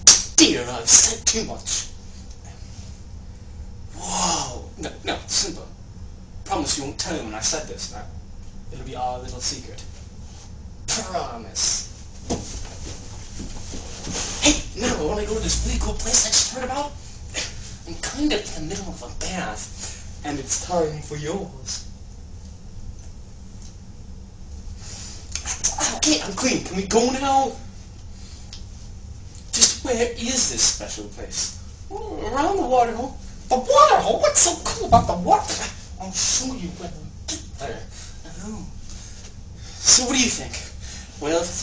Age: 20-39